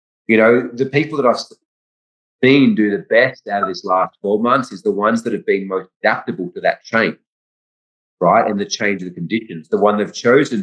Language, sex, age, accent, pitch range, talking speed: English, male, 30-49, Australian, 100-130 Hz, 215 wpm